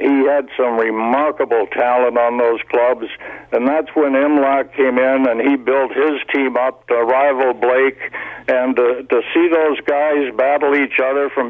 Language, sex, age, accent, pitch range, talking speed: English, male, 60-79, American, 120-140 Hz, 170 wpm